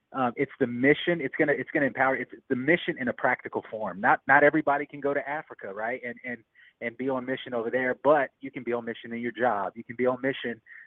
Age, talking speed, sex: 30-49, 255 wpm, male